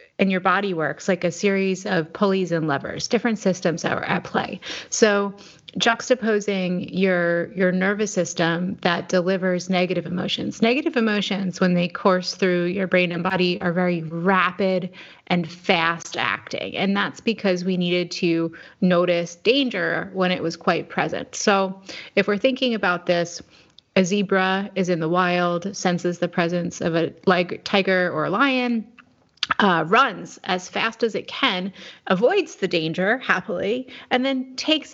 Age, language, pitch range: 30-49, English, 175-210 Hz